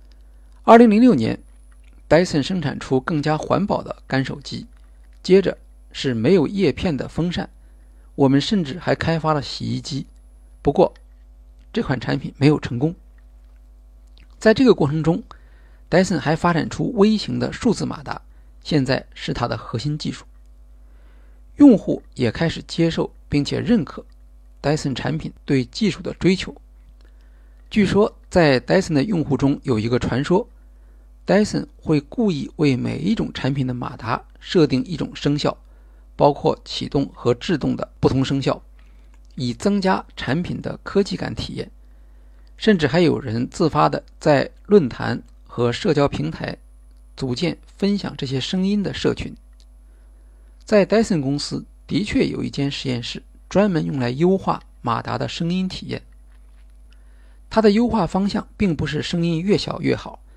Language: Chinese